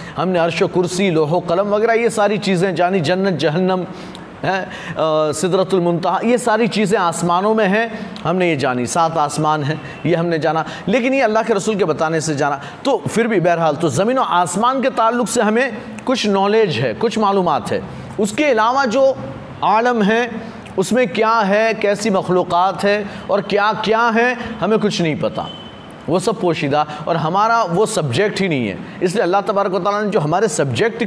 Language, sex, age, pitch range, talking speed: Hindi, male, 30-49, 175-230 Hz, 180 wpm